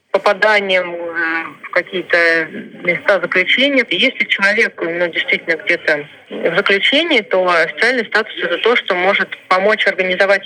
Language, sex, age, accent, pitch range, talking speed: Russian, female, 20-39, native, 185-225 Hz, 120 wpm